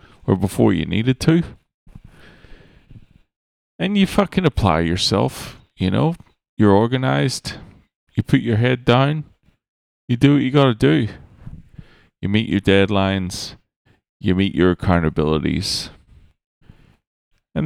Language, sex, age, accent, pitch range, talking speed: English, male, 40-59, American, 95-135 Hz, 115 wpm